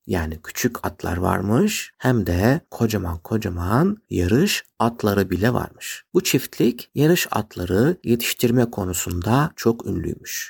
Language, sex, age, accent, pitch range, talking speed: Turkish, male, 50-69, native, 100-145 Hz, 115 wpm